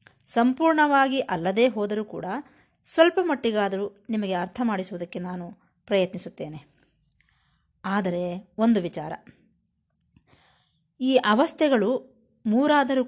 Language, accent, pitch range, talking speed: Kannada, native, 185-250 Hz, 80 wpm